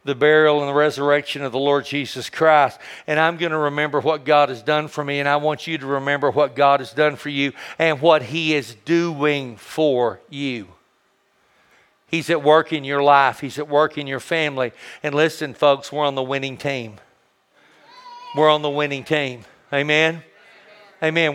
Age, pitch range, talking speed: 50-69, 150-175 Hz, 190 wpm